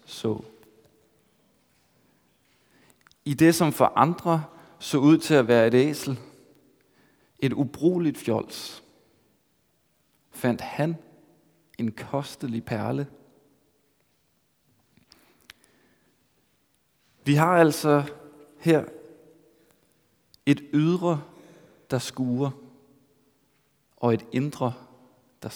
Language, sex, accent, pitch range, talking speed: Danish, male, native, 120-150 Hz, 75 wpm